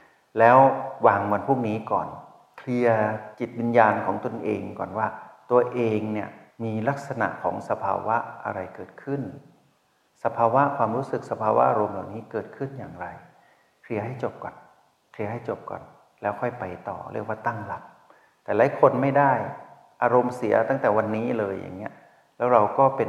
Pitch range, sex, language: 105-125 Hz, male, Thai